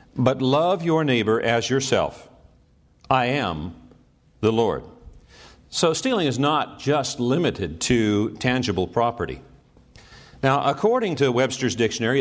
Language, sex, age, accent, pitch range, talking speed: English, male, 50-69, American, 125-155 Hz, 120 wpm